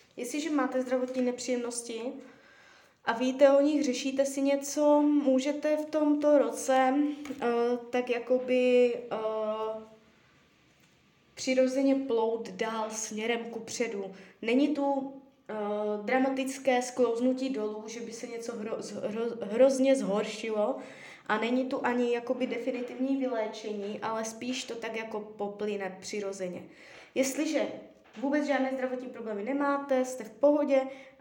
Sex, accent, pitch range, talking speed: female, native, 215-270 Hz, 110 wpm